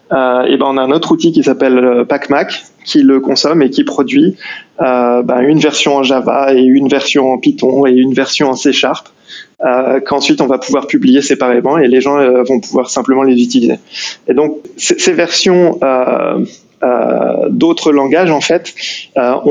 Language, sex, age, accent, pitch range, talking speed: French, male, 20-39, French, 130-160 Hz, 190 wpm